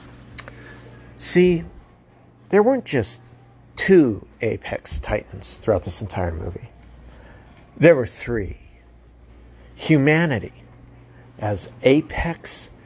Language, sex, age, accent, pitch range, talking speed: English, male, 50-69, American, 95-135 Hz, 80 wpm